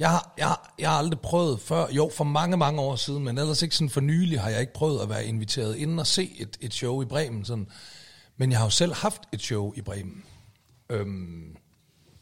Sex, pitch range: male, 110-155 Hz